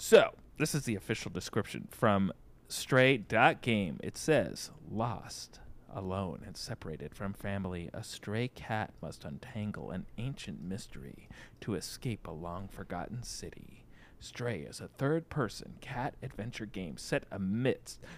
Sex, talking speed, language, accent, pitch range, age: male, 125 wpm, English, American, 95-130 Hz, 40-59